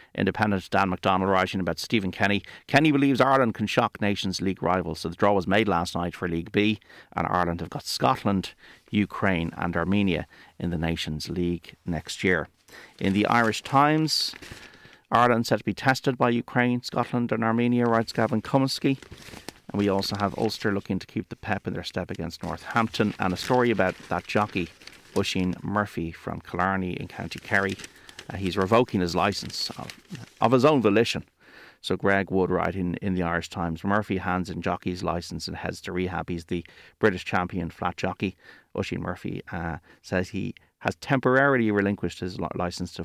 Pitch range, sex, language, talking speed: 90-110 Hz, male, English, 180 wpm